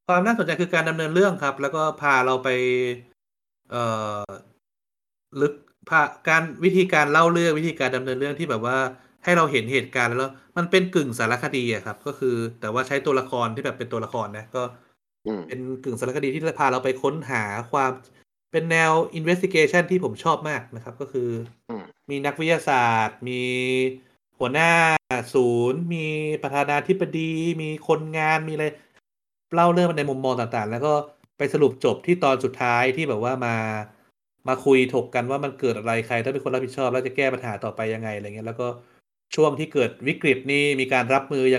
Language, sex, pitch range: Thai, male, 120-150 Hz